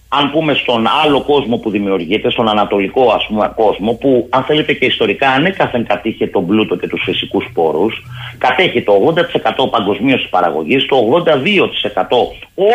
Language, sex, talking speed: Greek, male, 155 wpm